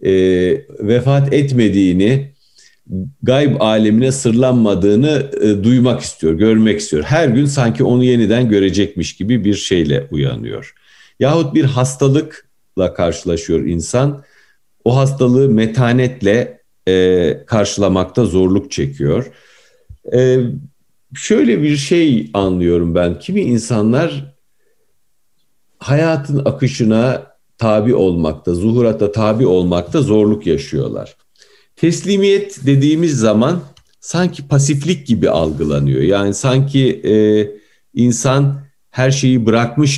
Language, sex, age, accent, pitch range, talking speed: Turkish, male, 50-69, native, 100-135 Hz, 95 wpm